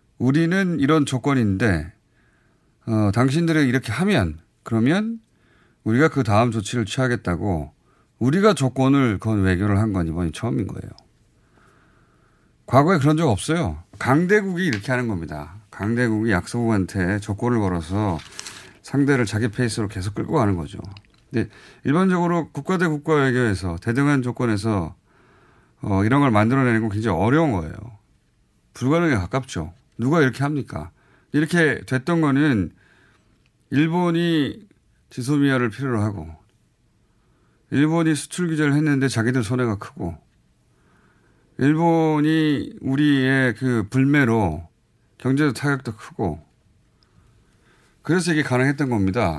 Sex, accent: male, native